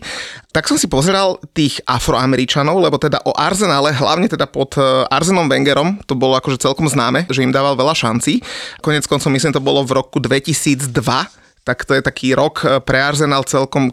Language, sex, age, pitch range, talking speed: Slovak, male, 30-49, 135-155 Hz, 175 wpm